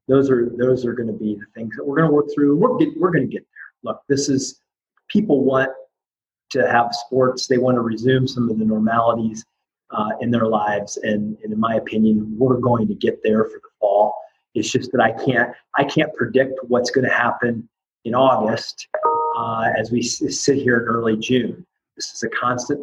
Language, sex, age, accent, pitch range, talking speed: English, male, 30-49, American, 120-145 Hz, 220 wpm